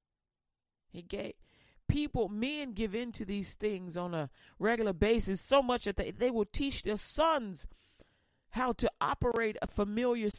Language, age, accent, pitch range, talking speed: English, 40-59, American, 210-275 Hz, 150 wpm